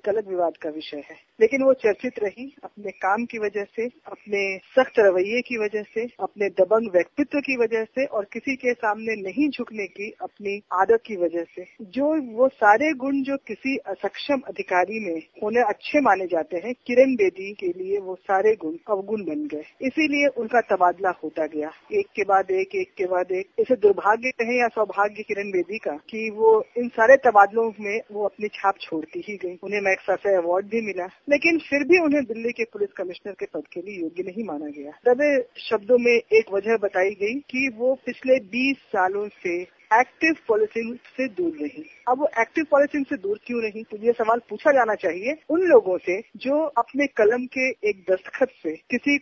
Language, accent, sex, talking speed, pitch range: Hindi, native, female, 195 wpm, 195-265 Hz